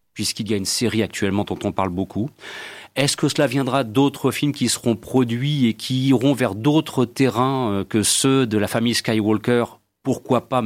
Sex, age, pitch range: male, 40-59, 105-135 Hz